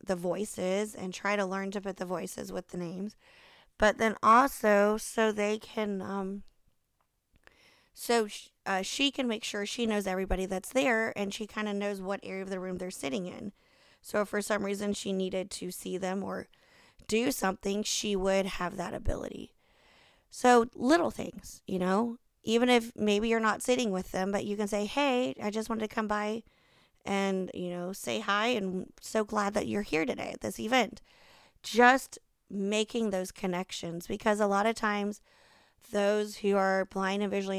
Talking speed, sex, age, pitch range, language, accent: 185 wpm, female, 30-49, 195-225 Hz, English, American